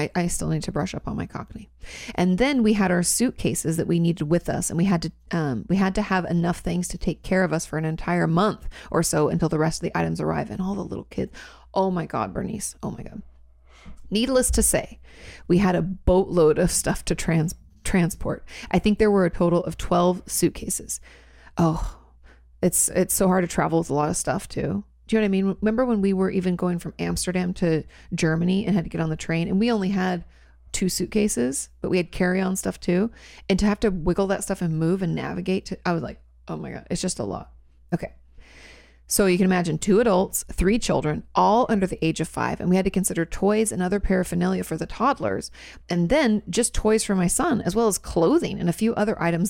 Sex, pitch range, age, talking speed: female, 160-190 Hz, 30-49, 240 wpm